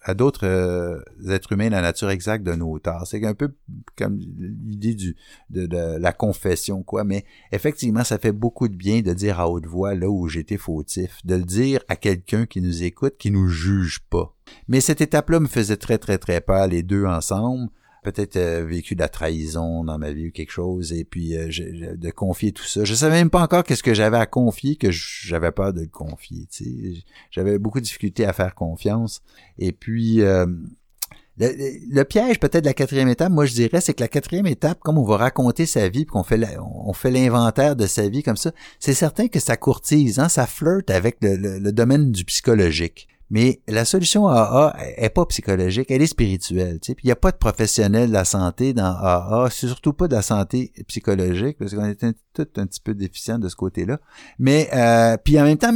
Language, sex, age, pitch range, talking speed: French, male, 60-79, 95-130 Hz, 225 wpm